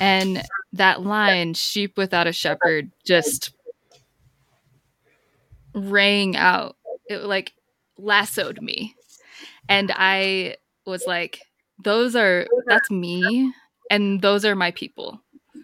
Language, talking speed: English, 105 wpm